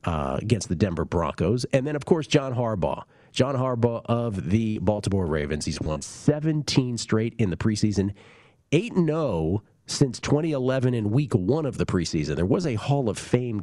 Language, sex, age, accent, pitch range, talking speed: English, male, 40-59, American, 90-130 Hz, 165 wpm